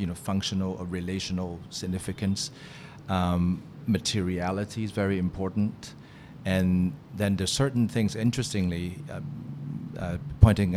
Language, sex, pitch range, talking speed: English, male, 95-120 Hz, 110 wpm